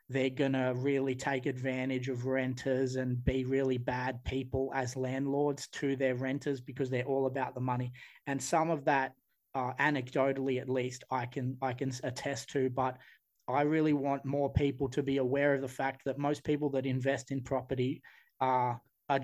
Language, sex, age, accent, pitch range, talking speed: English, male, 20-39, Australian, 130-140 Hz, 185 wpm